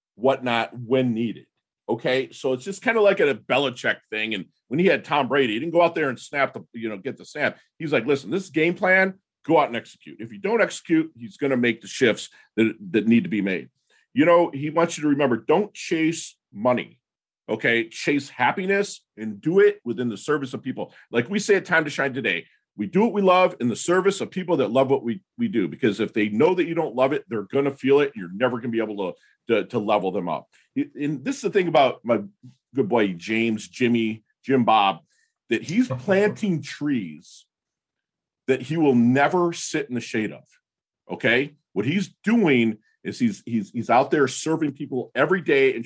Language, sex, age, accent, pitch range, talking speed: English, male, 40-59, American, 120-175 Hz, 225 wpm